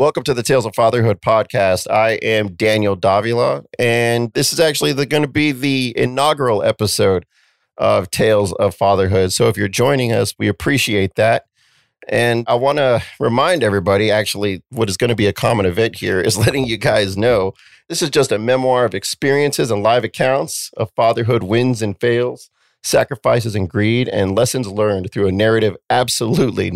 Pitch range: 100-120 Hz